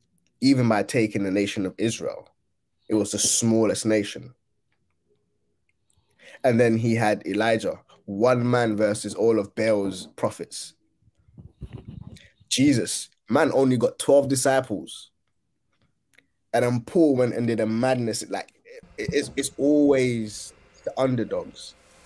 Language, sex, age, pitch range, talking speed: English, male, 20-39, 100-125 Hz, 120 wpm